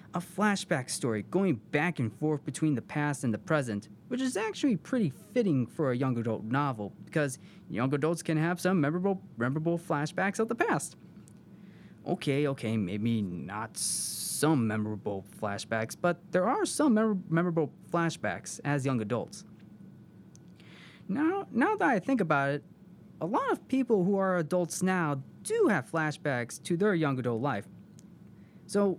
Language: English